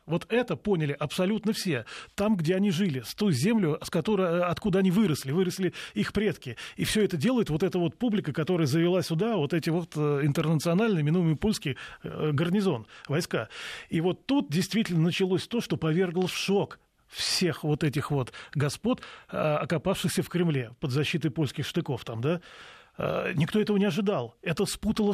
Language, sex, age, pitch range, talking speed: Russian, male, 20-39, 160-195 Hz, 160 wpm